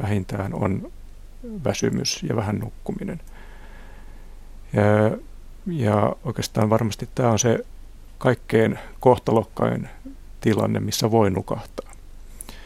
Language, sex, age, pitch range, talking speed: Finnish, male, 60-79, 100-115 Hz, 90 wpm